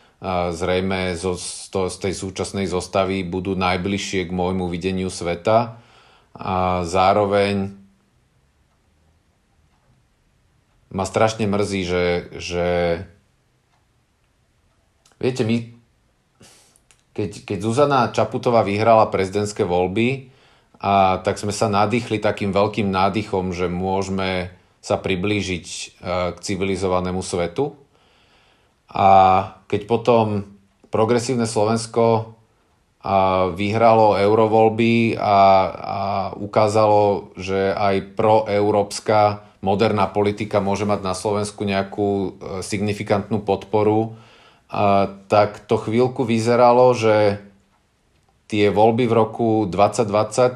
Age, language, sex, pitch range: 40-59, Slovak, male, 95-110 Hz